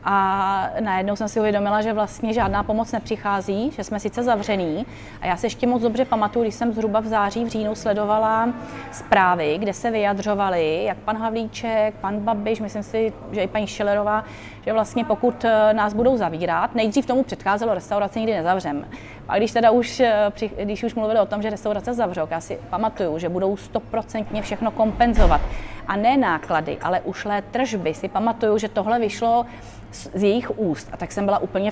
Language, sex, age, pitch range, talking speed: Czech, female, 30-49, 195-220 Hz, 180 wpm